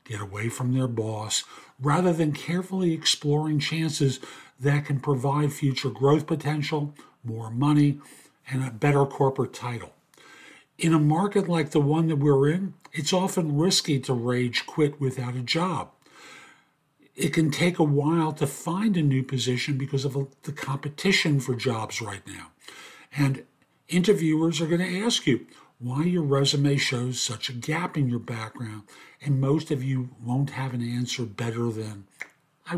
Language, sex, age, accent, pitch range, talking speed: English, male, 50-69, American, 125-160 Hz, 160 wpm